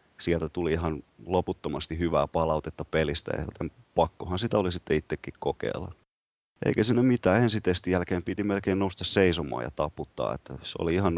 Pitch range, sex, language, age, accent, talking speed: 80-95 Hz, male, Finnish, 30-49, native, 160 wpm